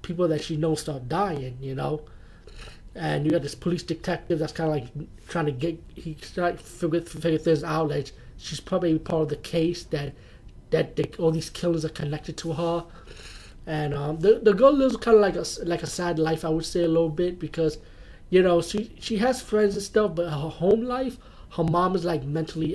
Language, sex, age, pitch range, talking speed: English, male, 30-49, 150-175 Hz, 220 wpm